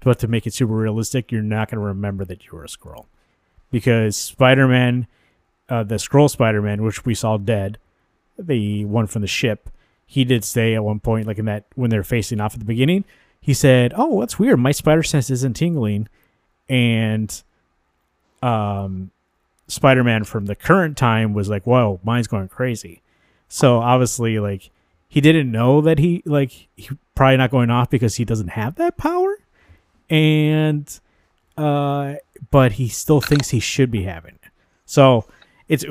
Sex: male